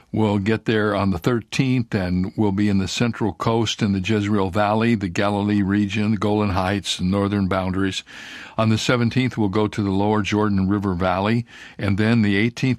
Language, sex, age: English, male, 60-79